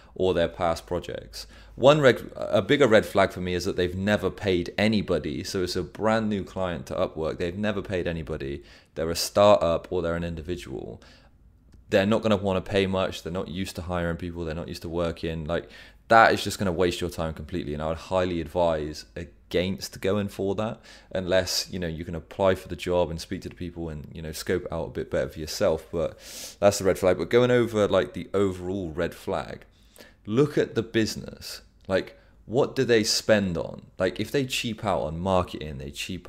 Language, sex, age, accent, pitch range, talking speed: English, male, 30-49, British, 85-100 Hz, 215 wpm